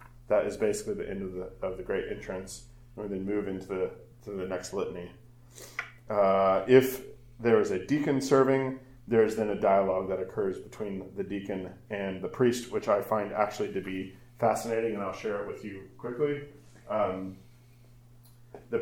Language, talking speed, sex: English, 180 wpm, male